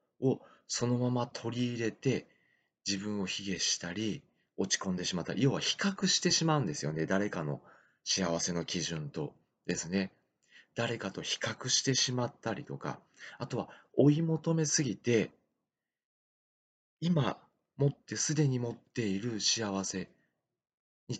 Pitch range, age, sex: 95-150 Hz, 40-59, male